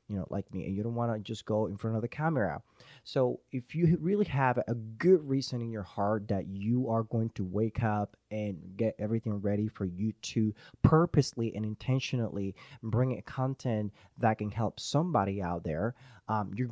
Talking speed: 195 wpm